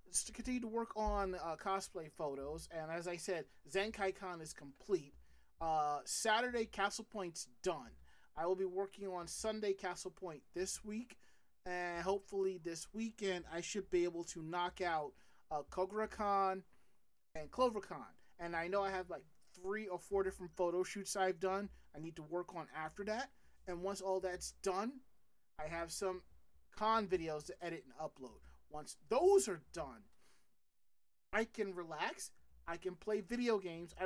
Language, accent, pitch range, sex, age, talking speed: English, American, 155-195 Hz, male, 30-49, 165 wpm